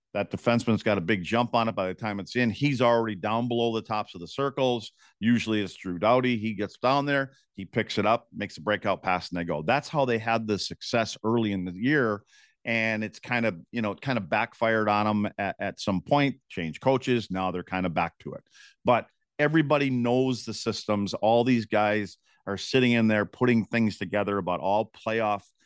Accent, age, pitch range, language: American, 50-69, 95-120 Hz, English